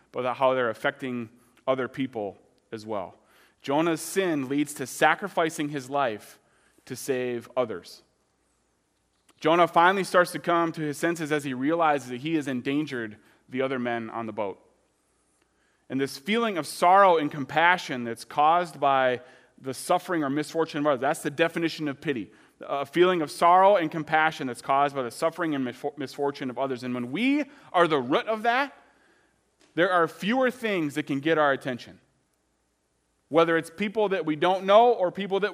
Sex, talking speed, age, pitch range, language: male, 170 wpm, 30-49, 130-180 Hz, English